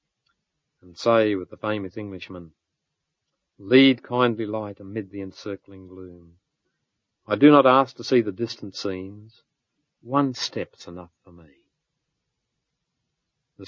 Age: 50-69